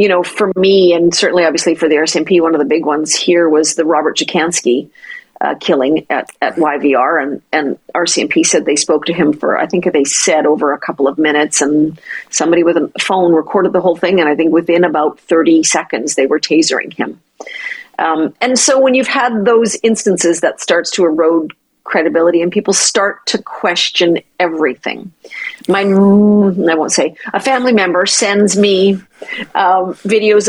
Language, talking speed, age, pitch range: English, 185 wpm, 50-69, 160-225 Hz